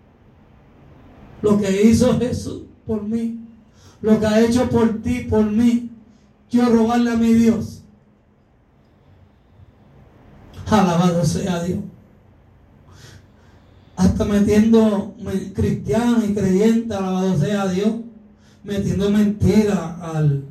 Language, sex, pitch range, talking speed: Spanish, male, 170-215 Hz, 95 wpm